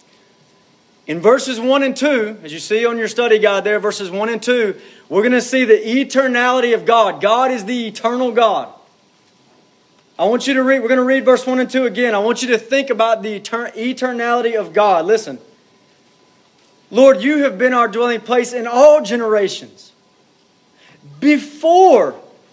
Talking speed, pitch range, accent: 175 wpm, 220-260 Hz, American